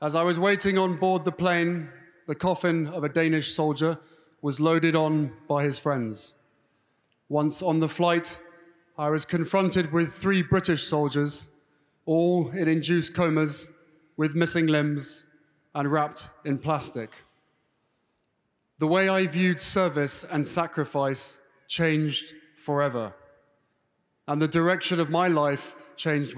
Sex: male